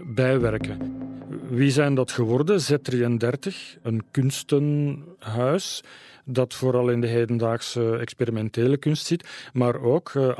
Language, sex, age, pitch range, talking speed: Dutch, male, 40-59, 120-140 Hz, 110 wpm